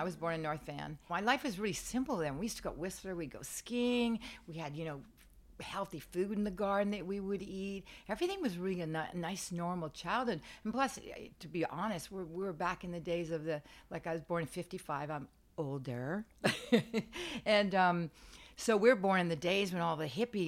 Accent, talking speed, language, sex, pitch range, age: American, 215 wpm, English, female, 155-190 Hz, 50-69